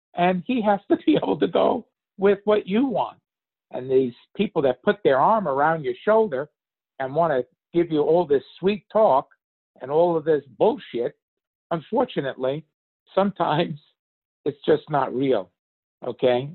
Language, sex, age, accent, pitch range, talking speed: English, male, 50-69, American, 130-185 Hz, 155 wpm